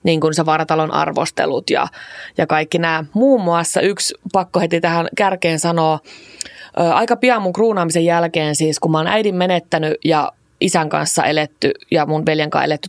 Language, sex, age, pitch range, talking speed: Finnish, female, 20-39, 160-205 Hz, 170 wpm